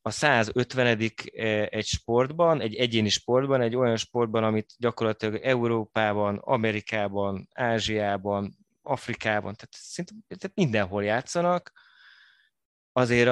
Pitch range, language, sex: 110-130 Hz, Hungarian, male